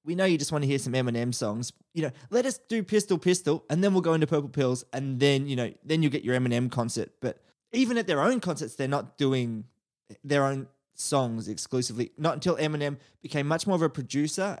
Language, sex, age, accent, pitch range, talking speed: English, male, 20-39, Australian, 130-170 Hz, 230 wpm